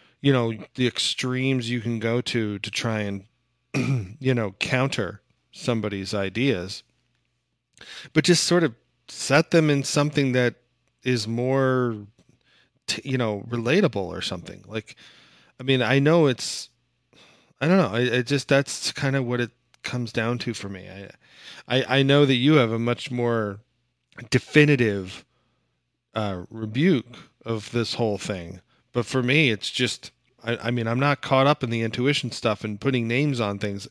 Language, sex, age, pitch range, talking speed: English, male, 40-59, 110-135 Hz, 165 wpm